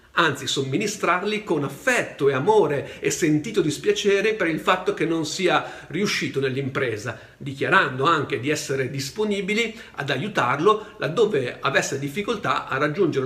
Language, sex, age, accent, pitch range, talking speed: Italian, male, 50-69, native, 130-205 Hz, 130 wpm